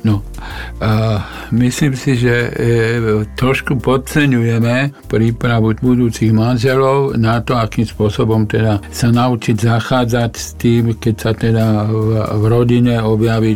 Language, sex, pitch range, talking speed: Slovak, male, 110-120 Hz, 95 wpm